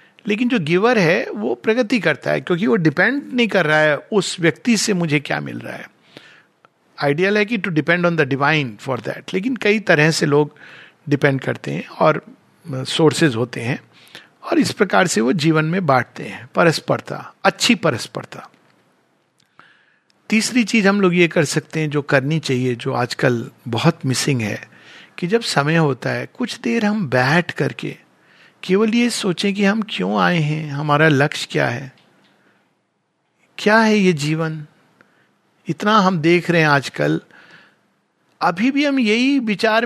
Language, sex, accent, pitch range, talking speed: Hindi, male, native, 145-195 Hz, 165 wpm